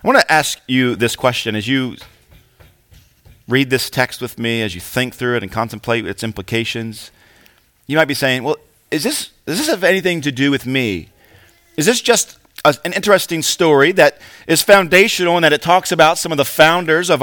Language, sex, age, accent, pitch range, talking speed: English, male, 40-59, American, 130-175 Hz, 200 wpm